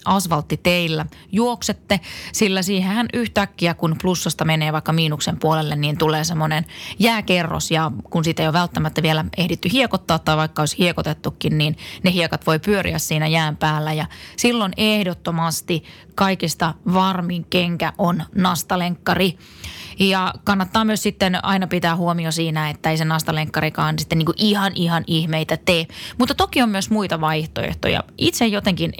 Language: Finnish